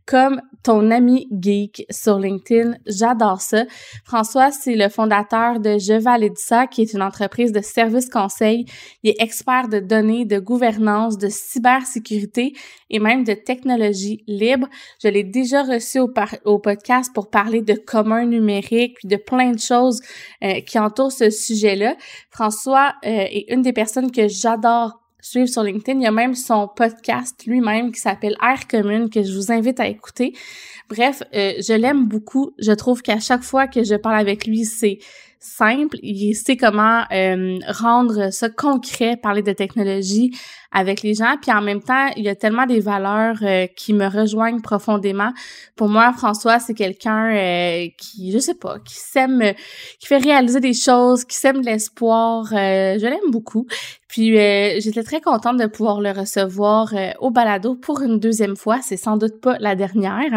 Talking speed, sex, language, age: 180 wpm, female, French, 20-39